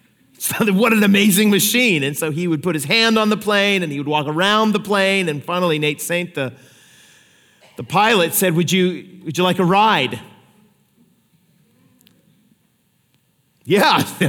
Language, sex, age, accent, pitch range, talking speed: English, male, 40-59, American, 165-210 Hz, 155 wpm